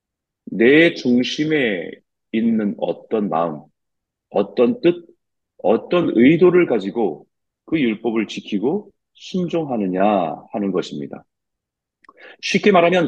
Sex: male